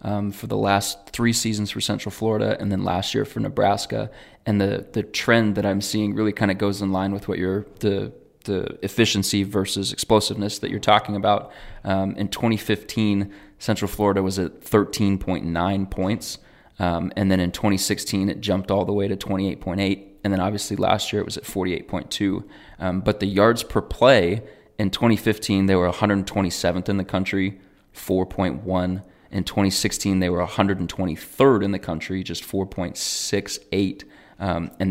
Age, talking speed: 20-39, 165 wpm